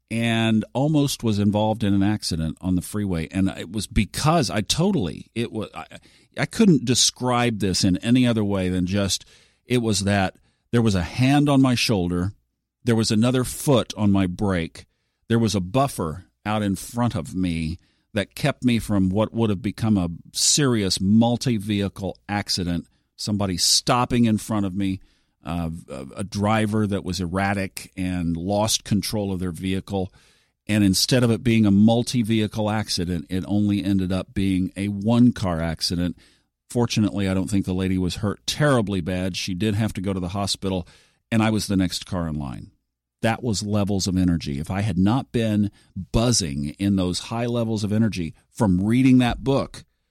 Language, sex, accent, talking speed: English, male, American, 175 wpm